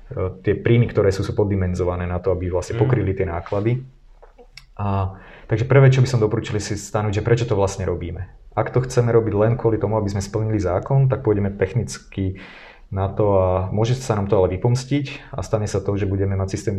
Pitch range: 95-110 Hz